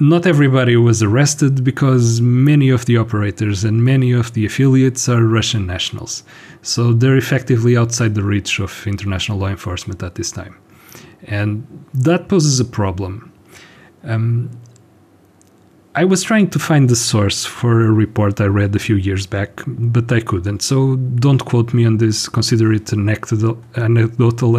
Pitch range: 105-125 Hz